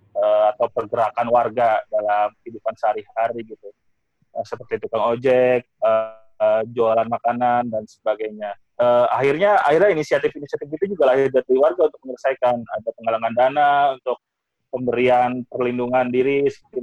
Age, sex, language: 20-39, male, Indonesian